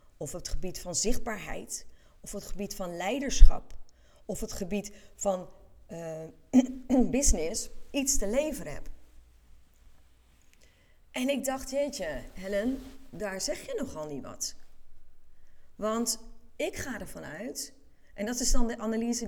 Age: 30-49